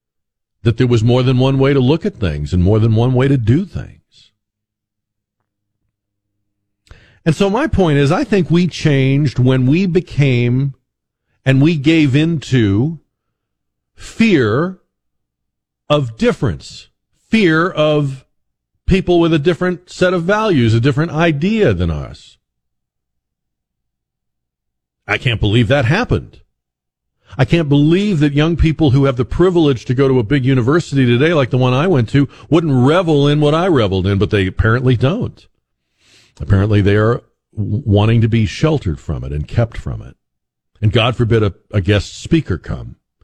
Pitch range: 100-145 Hz